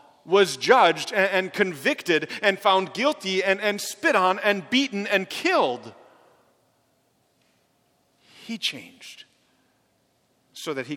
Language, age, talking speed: English, 40-59, 110 wpm